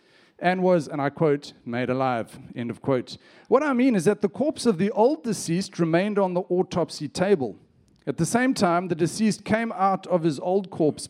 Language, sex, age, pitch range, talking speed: English, male, 40-59, 150-210 Hz, 205 wpm